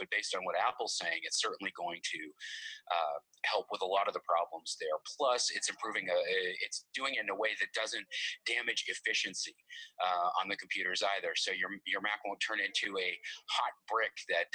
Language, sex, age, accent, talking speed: English, male, 30-49, American, 200 wpm